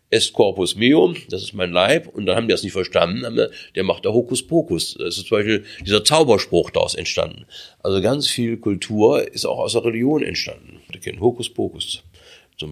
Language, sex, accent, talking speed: German, male, German, 195 wpm